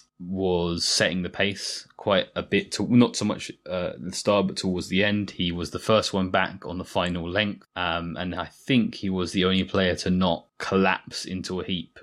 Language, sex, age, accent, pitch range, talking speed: English, male, 20-39, British, 85-95 Hz, 215 wpm